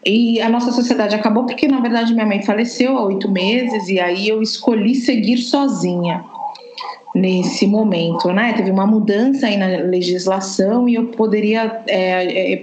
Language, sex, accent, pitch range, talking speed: Portuguese, female, Brazilian, 210-270 Hz, 150 wpm